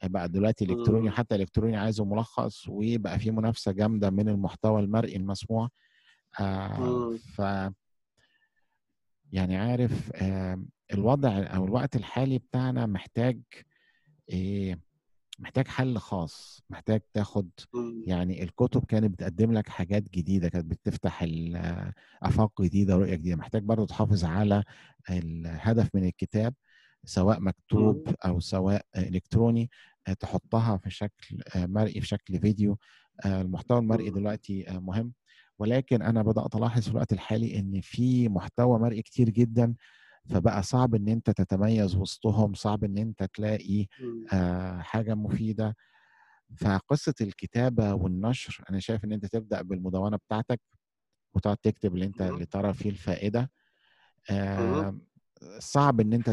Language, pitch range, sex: Arabic, 95-115 Hz, male